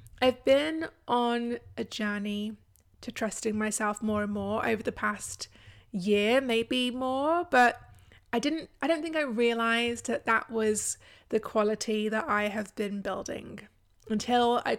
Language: English